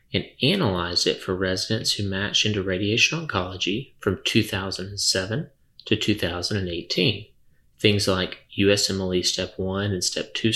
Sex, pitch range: male, 95-110 Hz